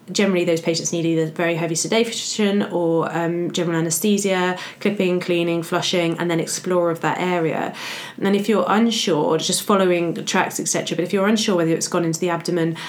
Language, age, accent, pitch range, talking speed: English, 20-39, British, 165-190 Hz, 190 wpm